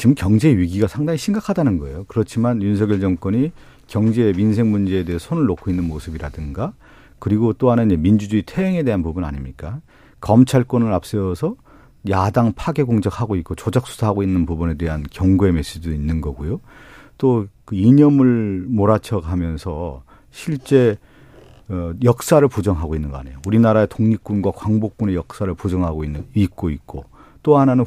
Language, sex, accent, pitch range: Korean, male, native, 90-130 Hz